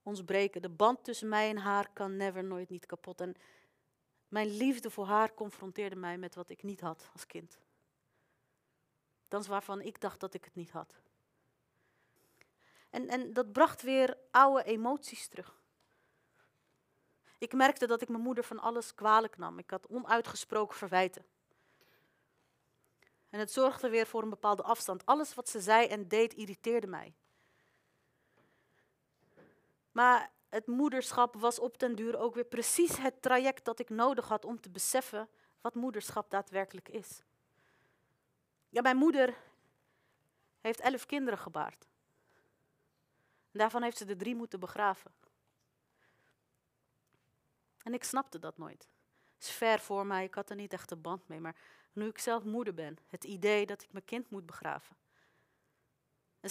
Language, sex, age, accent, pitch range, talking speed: Dutch, female, 40-59, Dutch, 185-235 Hz, 155 wpm